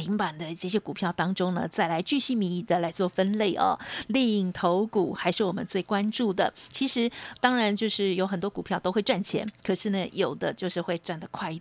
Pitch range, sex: 180-225 Hz, female